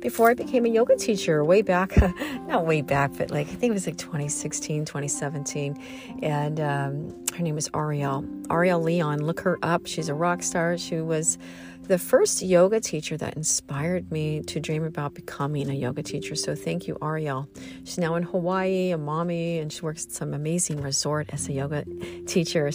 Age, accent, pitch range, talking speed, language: 40-59, American, 145-180 Hz, 190 wpm, English